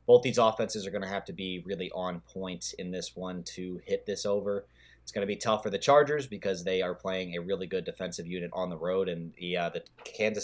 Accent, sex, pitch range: American, male, 85-100 Hz